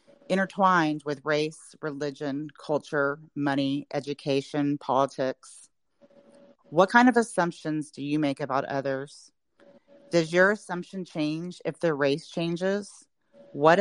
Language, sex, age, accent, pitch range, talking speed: English, female, 40-59, American, 150-195 Hz, 115 wpm